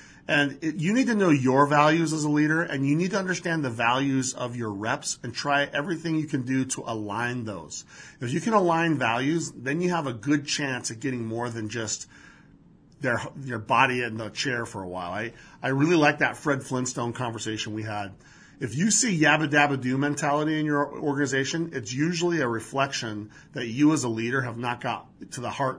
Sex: male